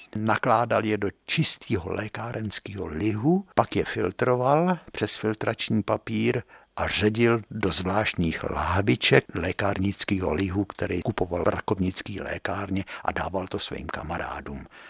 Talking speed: 115 wpm